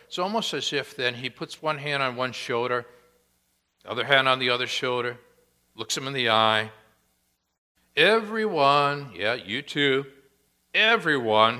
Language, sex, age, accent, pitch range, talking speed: English, male, 60-79, American, 105-140 Hz, 150 wpm